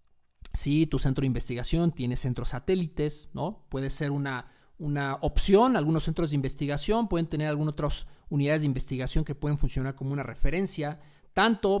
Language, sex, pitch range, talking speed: Spanish, male, 140-175 Hz, 170 wpm